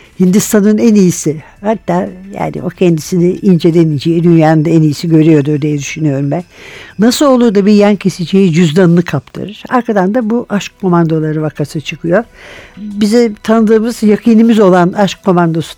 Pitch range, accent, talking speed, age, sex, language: 175-225 Hz, native, 140 wpm, 60-79, female, Turkish